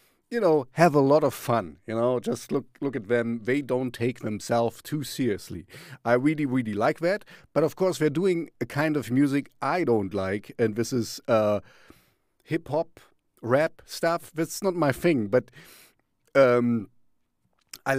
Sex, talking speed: male, 170 wpm